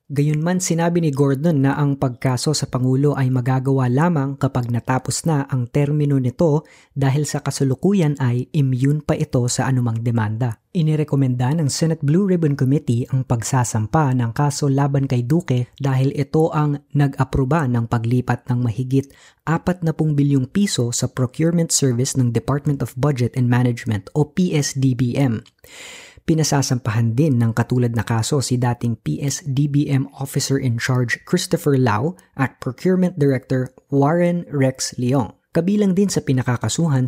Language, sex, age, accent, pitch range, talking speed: Filipino, female, 20-39, native, 125-155 Hz, 140 wpm